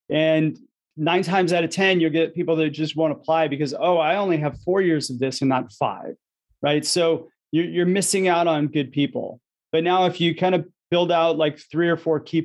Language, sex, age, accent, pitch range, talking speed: English, male, 30-49, American, 150-170 Hz, 225 wpm